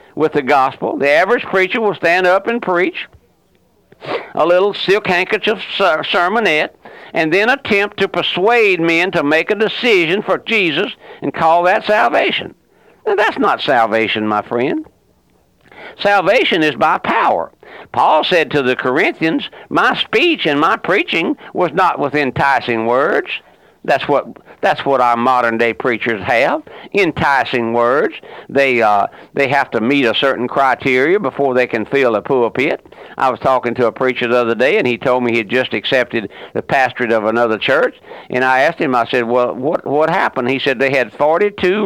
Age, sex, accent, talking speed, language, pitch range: 60-79, male, American, 170 wpm, English, 125-185 Hz